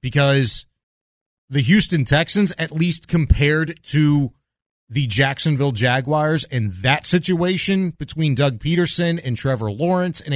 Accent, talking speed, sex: American, 120 wpm, male